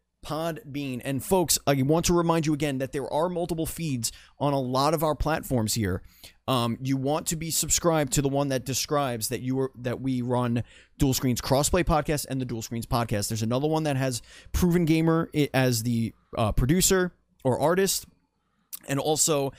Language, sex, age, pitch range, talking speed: English, male, 30-49, 115-150 Hz, 195 wpm